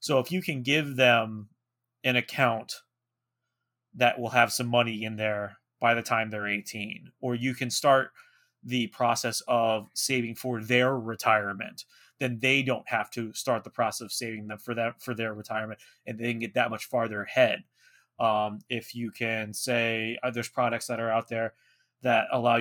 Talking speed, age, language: 185 wpm, 20-39, English